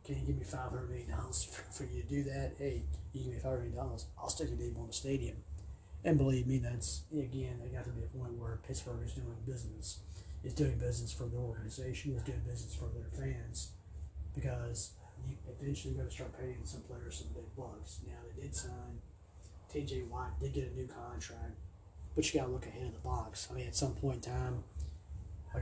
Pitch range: 75-115 Hz